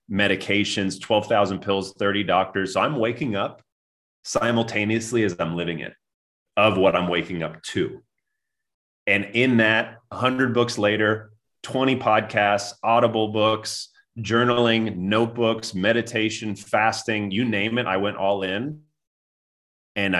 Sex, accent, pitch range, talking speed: male, American, 90-110 Hz, 125 wpm